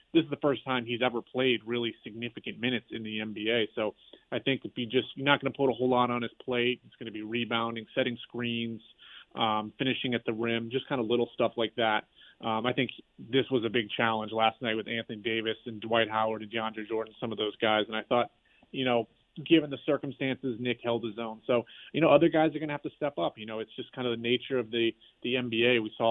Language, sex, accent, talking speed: English, male, American, 255 wpm